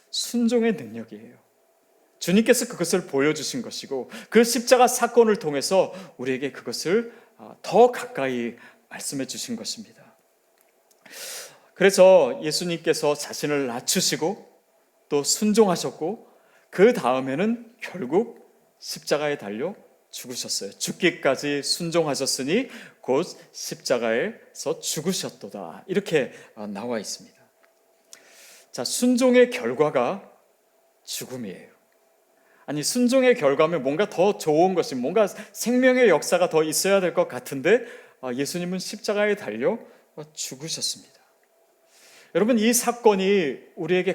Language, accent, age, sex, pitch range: Korean, native, 30-49, male, 150-235 Hz